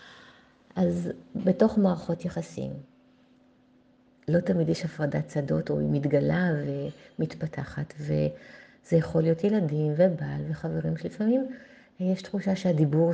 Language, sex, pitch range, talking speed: Hebrew, female, 150-185 Hz, 105 wpm